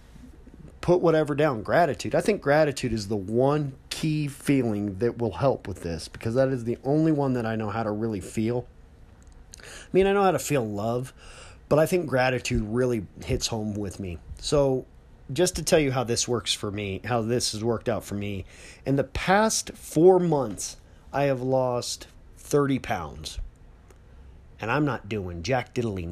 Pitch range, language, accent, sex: 95-135 Hz, English, American, male